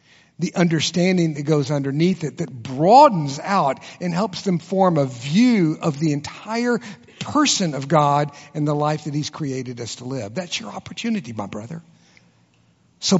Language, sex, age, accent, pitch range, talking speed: English, male, 60-79, American, 135-180 Hz, 165 wpm